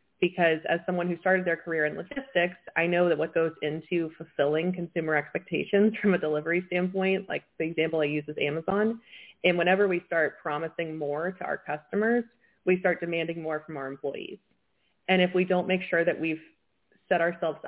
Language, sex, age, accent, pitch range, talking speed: English, female, 20-39, American, 155-185 Hz, 185 wpm